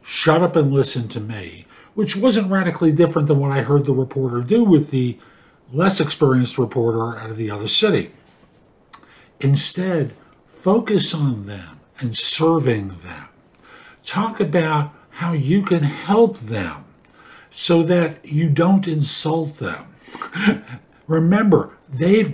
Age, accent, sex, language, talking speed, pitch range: 50-69, American, male, English, 130 wpm, 130-175 Hz